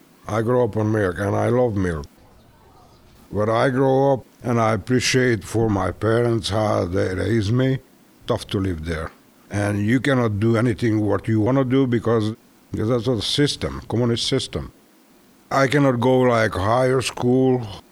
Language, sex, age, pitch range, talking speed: English, male, 60-79, 100-120 Hz, 165 wpm